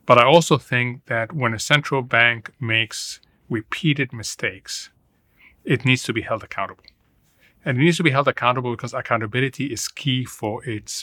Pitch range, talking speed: 110-135 Hz, 170 wpm